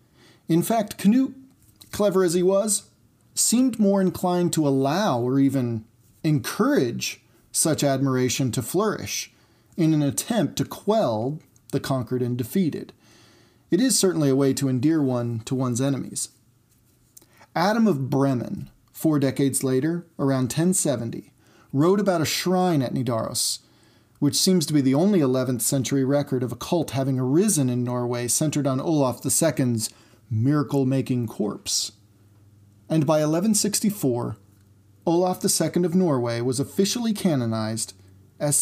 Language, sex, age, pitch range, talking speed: English, male, 40-59, 115-165 Hz, 135 wpm